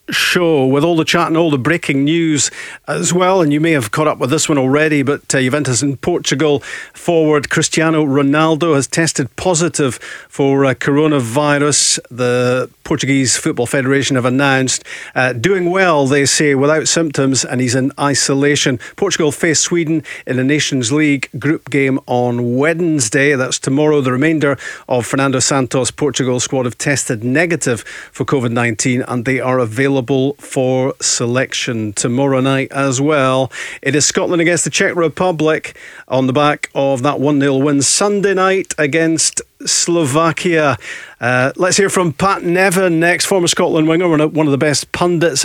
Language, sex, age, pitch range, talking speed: English, male, 40-59, 135-160 Hz, 160 wpm